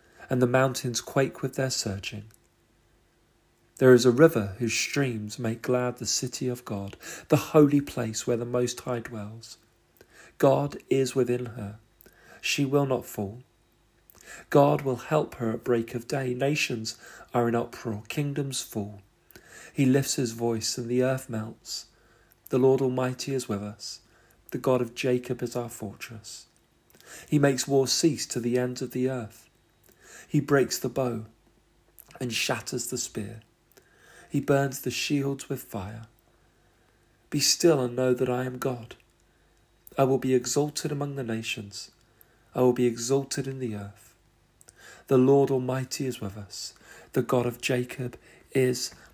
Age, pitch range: 40-59, 115-130 Hz